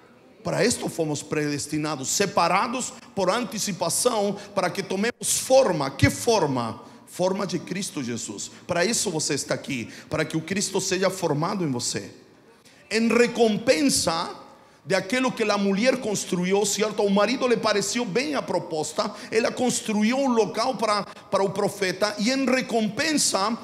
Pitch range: 175-225 Hz